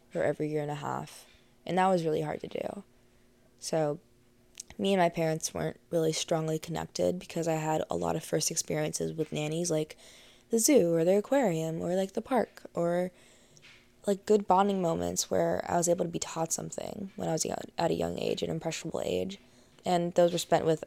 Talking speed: 200 wpm